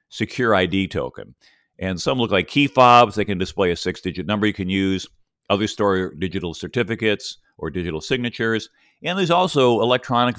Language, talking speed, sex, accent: English, 170 wpm, male, American